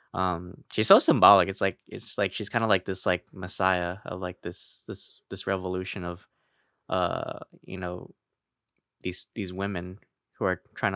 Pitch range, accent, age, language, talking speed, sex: 90-110 Hz, American, 10-29, English, 170 wpm, male